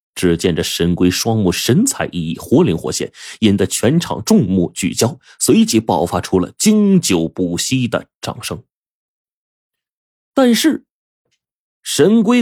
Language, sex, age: Chinese, male, 30-49